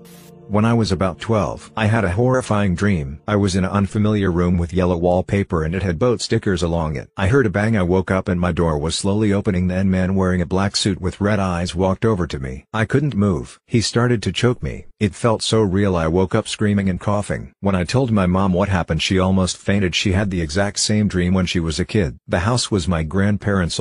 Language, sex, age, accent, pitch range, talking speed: English, male, 50-69, American, 90-105 Hz, 240 wpm